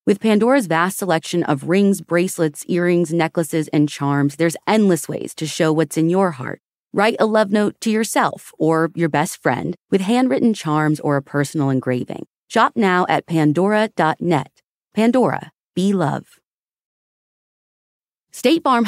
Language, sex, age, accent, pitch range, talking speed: English, female, 30-49, American, 135-195 Hz, 145 wpm